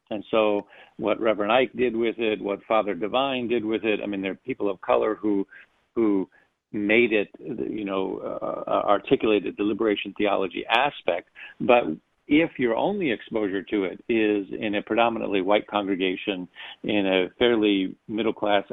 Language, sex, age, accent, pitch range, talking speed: English, male, 50-69, American, 100-115 Hz, 165 wpm